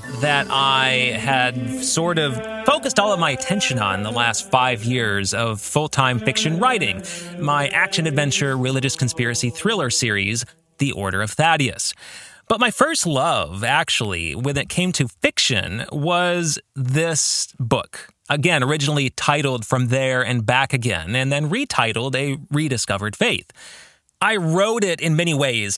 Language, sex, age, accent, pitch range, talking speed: English, male, 30-49, American, 125-165 Hz, 145 wpm